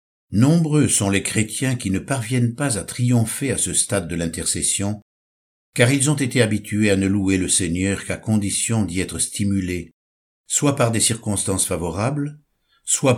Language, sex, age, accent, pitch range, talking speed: French, male, 60-79, French, 90-120 Hz, 165 wpm